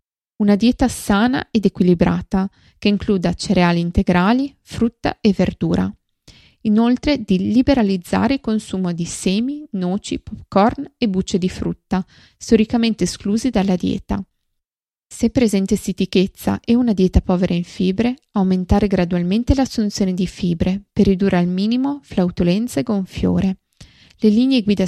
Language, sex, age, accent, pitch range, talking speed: Italian, female, 20-39, native, 180-225 Hz, 130 wpm